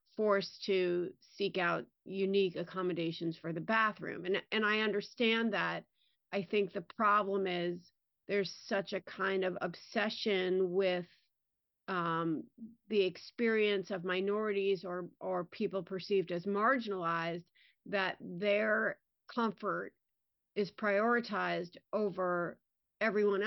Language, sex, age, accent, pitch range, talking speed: English, female, 40-59, American, 185-215 Hz, 110 wpm